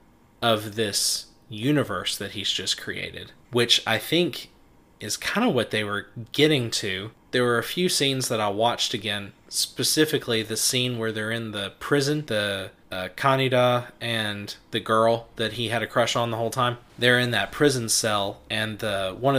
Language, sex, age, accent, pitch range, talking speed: English, male, 20-39, American, 110-125 Hz, 180 wpm